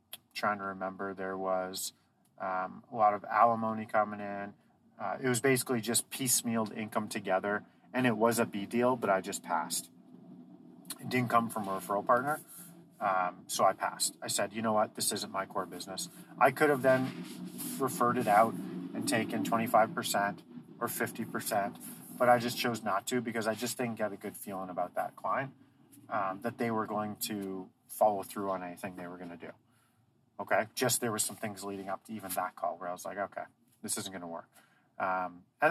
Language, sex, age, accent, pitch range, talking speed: English, male, 30-49, American, 100-125 Hz, 200 wpm